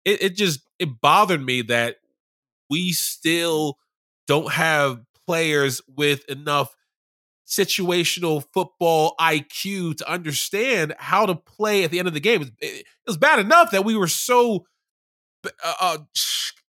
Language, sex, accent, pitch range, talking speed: English, male, American, 140-185 Hz, 135 wpm